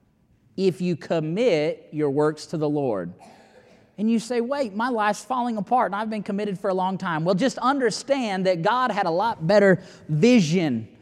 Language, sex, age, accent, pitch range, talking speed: English, male, 30-49, American, 160-215 Hz, 185 wpm